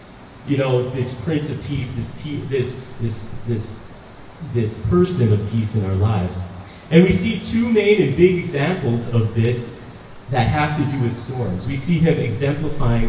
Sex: male